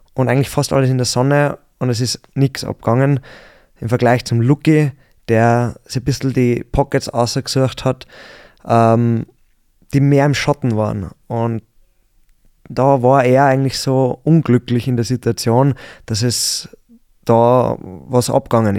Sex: male